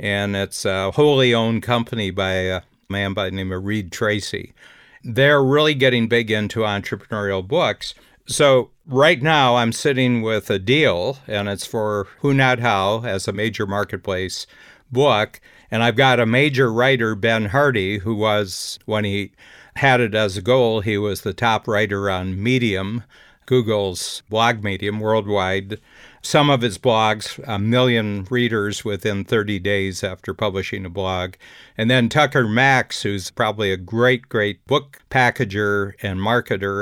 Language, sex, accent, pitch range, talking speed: English, male, American, 100-120 Hz, 155 wpm